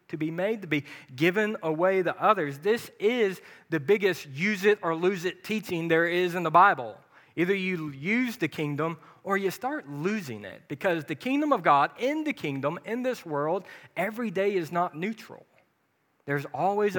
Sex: male